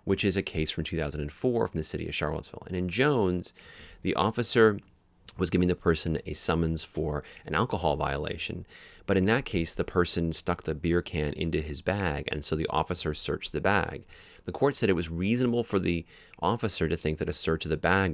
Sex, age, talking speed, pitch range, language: male, 30-49, 210 wpm, 75-95 Hz, English